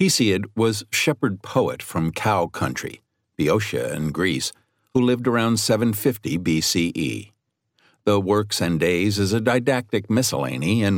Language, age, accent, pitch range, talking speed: English, 60-79, American, 90-120 Hz, 125 wpm